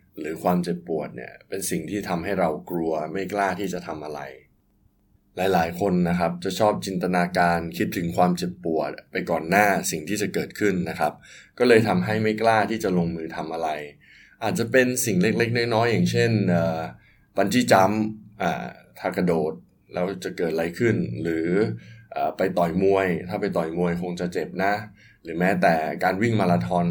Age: 20-39